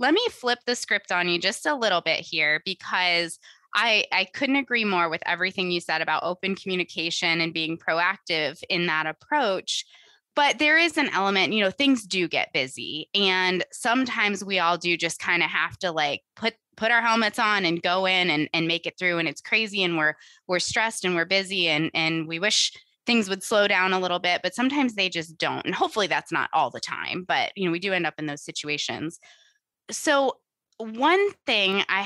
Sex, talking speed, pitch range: female, 210 wpm, 175-225 Hz